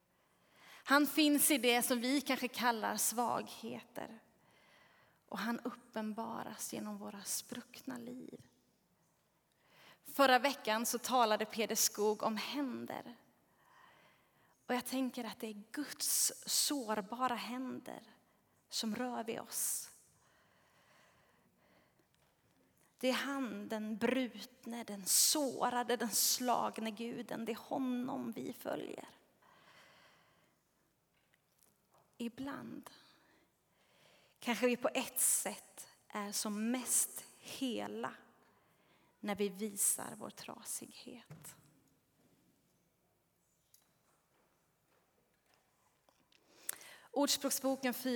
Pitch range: 220-265 Hz